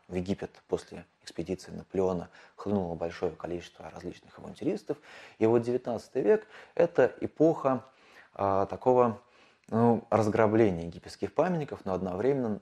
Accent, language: native, Russian